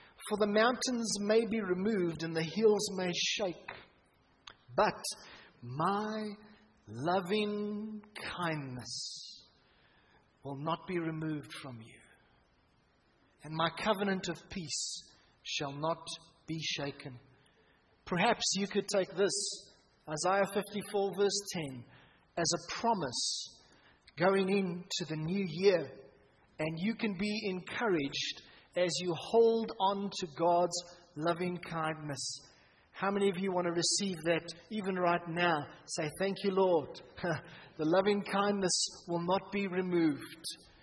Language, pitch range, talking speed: English, 155-200 Hz, 120 wpm